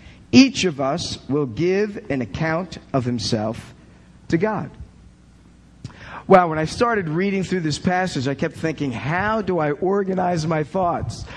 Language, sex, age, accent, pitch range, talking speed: English, male, 50-69, American, 160-215 Hz, 150 wpm